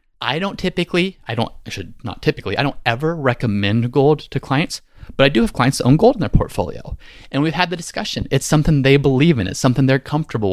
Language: English